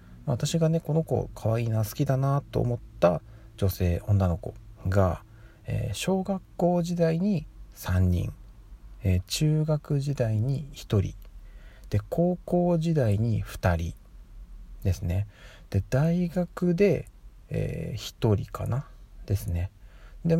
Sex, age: male, 40-59